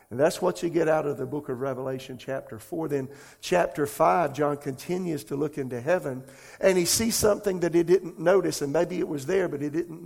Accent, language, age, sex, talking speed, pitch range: American, English, 50-69, male, 225 wpm, 140-170 Hz